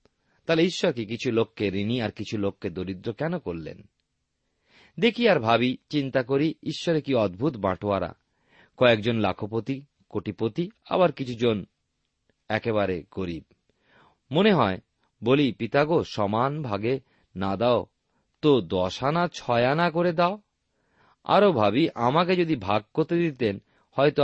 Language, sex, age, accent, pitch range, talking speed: Bengali, male, 40-59, native, 100-150 Hz, 125 wpm